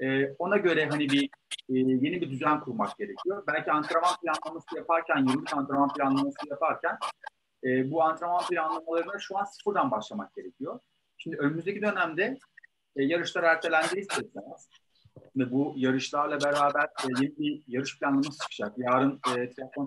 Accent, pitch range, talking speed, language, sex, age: native, 130-165 Hz, 140 wpm, Turkish, male, 40-59